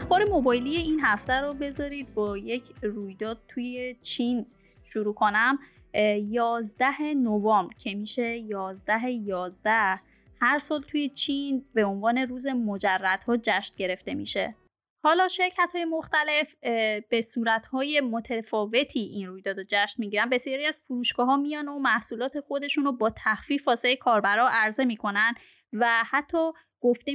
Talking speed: 135 wpm